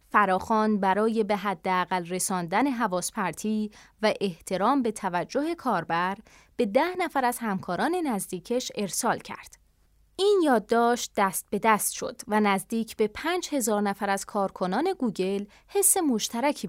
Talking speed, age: 135 wpm, 20-39